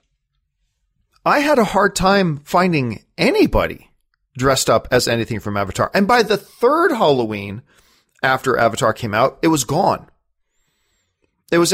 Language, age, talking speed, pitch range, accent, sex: English, 40-59, 140 wpm, 140-205 Hz, American, male